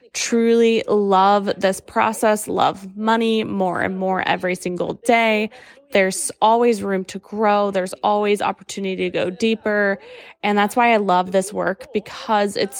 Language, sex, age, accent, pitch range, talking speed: English, female, 20-39, American, 190-225 Hz, 150 wpm